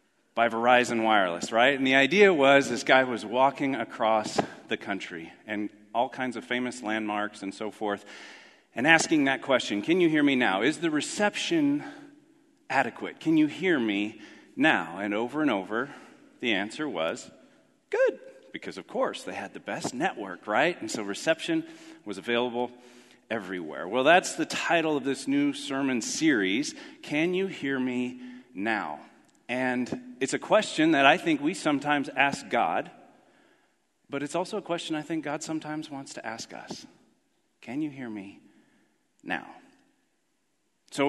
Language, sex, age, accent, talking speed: English, male, 40-59, American, 160 wpm